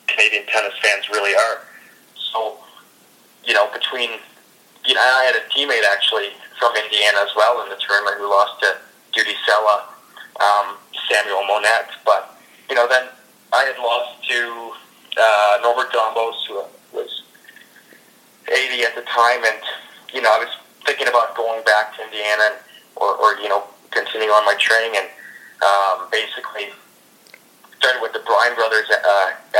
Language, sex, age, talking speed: English, male, 30-49, 150 wpm